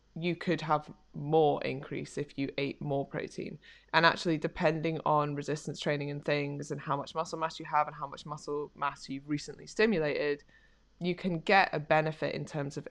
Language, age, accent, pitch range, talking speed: English, 20-39, British, 145-175 Hz, 190 wpm